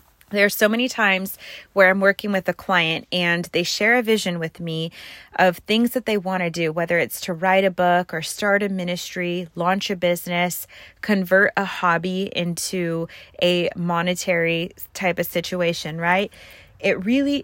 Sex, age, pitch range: female, 30-49, 175-205 Hz